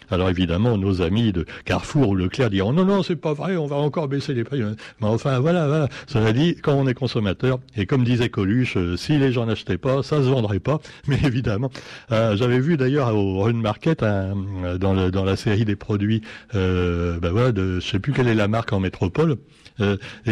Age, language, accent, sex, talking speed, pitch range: 60-79, French, French, male, 225 wpm, 105-145 Hz